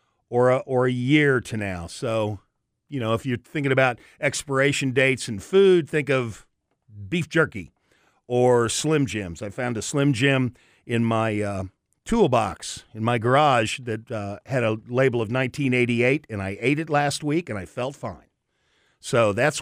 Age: 50-69